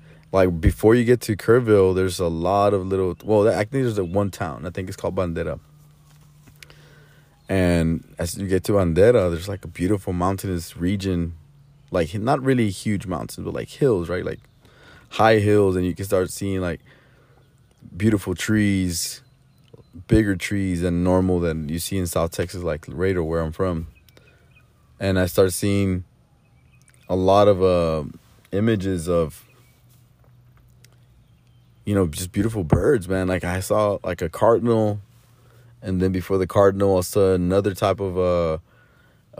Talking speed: 160 wpm